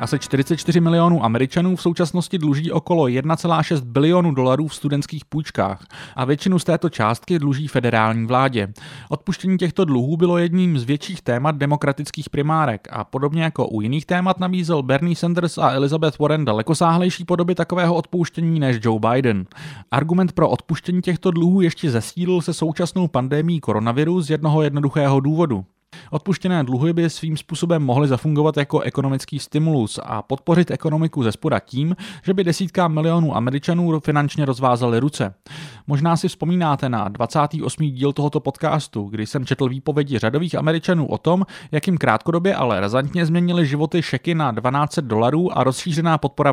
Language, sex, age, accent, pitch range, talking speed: Czech, male, 30-49, native, 130-170 Hz, 155 wpm